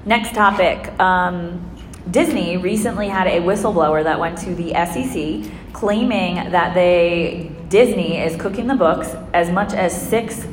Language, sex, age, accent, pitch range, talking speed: English, female, 20-39, American, 160-180 Hz, 140 wpm